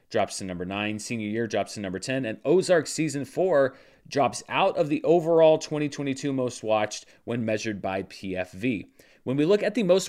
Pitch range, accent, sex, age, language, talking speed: 115-165 Hz, American, male, 30-49, English, 190 wpm